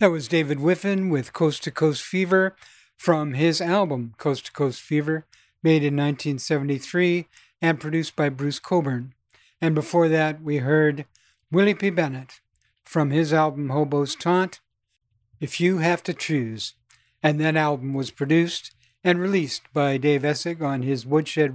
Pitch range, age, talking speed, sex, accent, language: 135-170 Hz, 60-79, 155 wpm, male, American, English